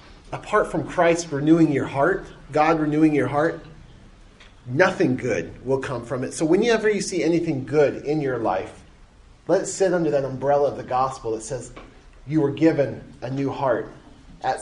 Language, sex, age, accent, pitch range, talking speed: English, male, 30-49, American, 135-175 Hz, 175 wpm